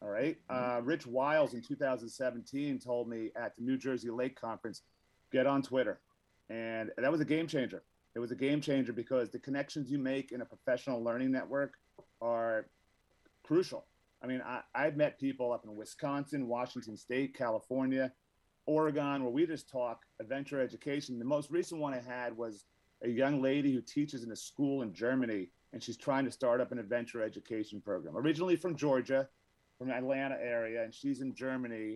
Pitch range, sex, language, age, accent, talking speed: 120-145 Hz, male, English, 40-59, American, 180 wpm